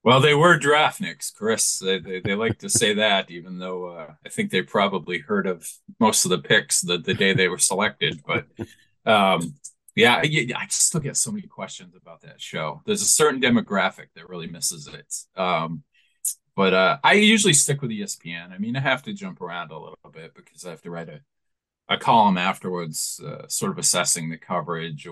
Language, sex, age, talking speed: English, male, 40-59, 205 wpm